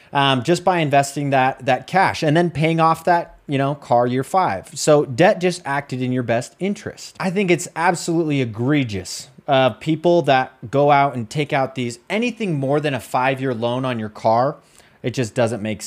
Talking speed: 200 wpm